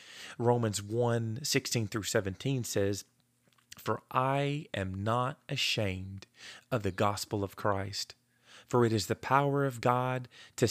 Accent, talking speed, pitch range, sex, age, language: American, 135 wpm, 100-125 Hz, male, 30-49, English